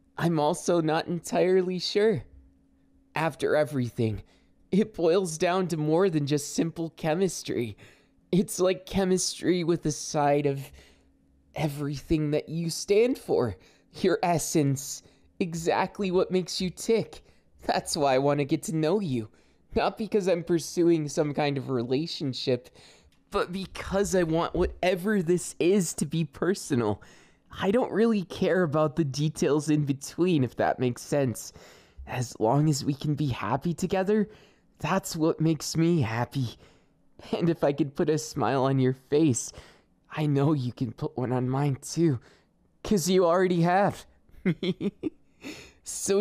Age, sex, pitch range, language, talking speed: 20-39, male, 135-180 Hz, English, 145 wpm